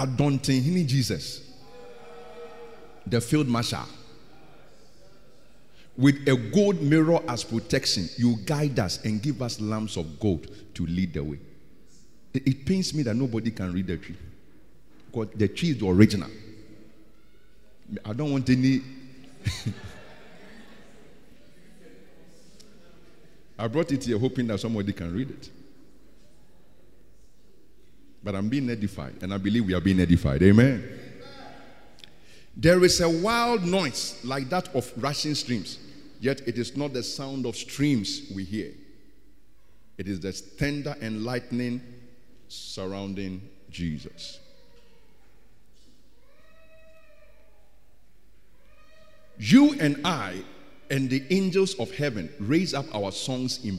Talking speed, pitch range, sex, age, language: 120 wpm, 100-140 Hz, male, 50-69, English